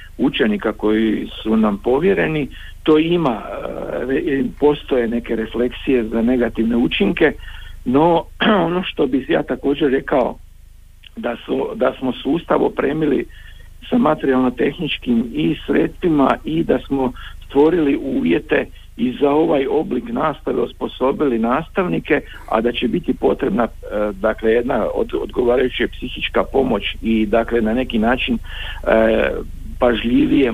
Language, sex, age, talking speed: Croatian, male, 50-69, 115 wpm